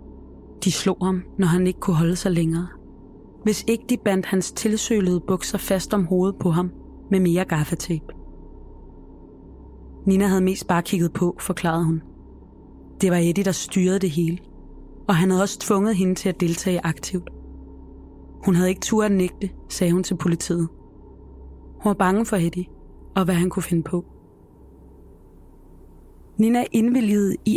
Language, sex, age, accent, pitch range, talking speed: Danish, female, 20-39, native, 165-195 Hz, 160 wpm